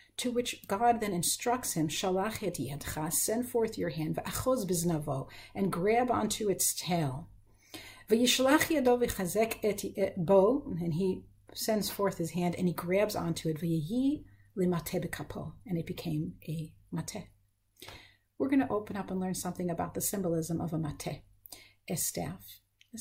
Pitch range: 165-215 Hz